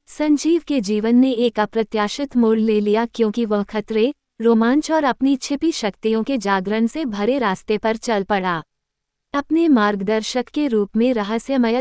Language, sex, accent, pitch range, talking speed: Hindi, female, native, 205-265 Hz, 160 wpm